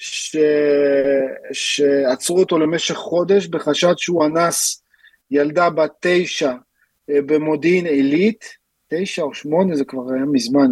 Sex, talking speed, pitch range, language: male, 110 wpm, 145-205 Hz, Hebrew